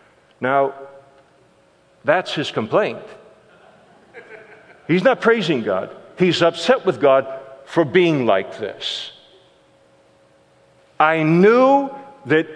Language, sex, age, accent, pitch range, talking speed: English, male, 50-69, American, 140-220 Hz, 90 wpm